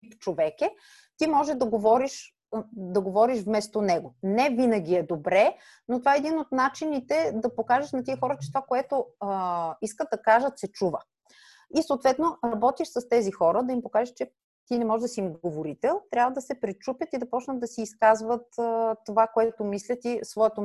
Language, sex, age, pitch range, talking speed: Bulgarian, female, 30-49, 185-245 Hz, 190 wpm